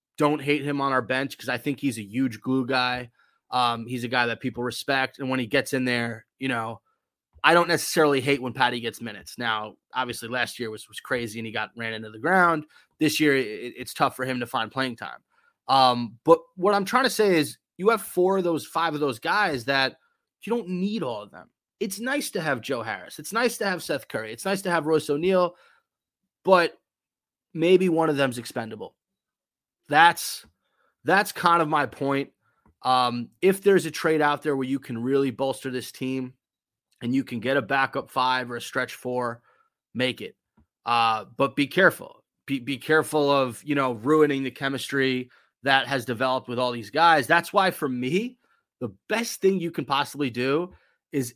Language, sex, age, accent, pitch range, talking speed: English, male, 20-39, American, 125-165 Hz, 205 wpm